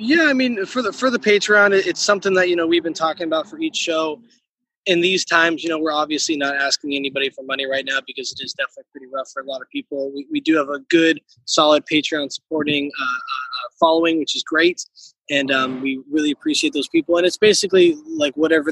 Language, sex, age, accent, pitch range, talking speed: English, male, 20-39, American, 140-195 Hz, 230 wpm